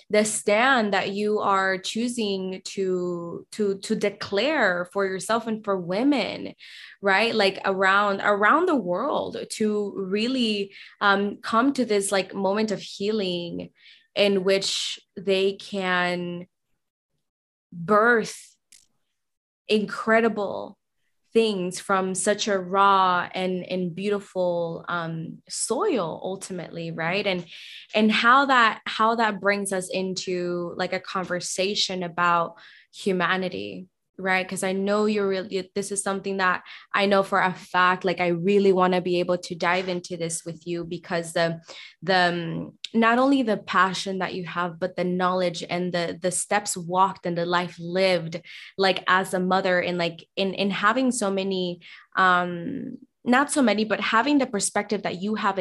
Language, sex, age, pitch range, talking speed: English, female, 20-39, 180-205 Hz, 145 wpm